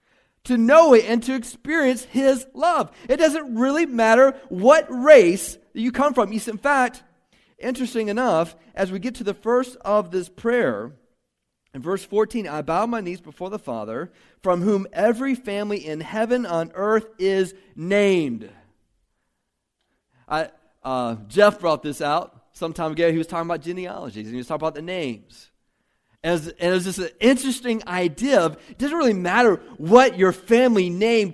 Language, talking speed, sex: English, 170 wpm, male